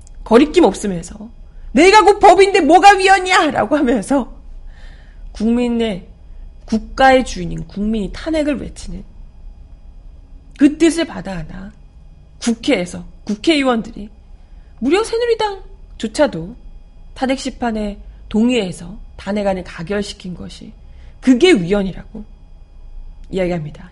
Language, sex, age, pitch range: Korean, female, 40-59, 200-335 Hz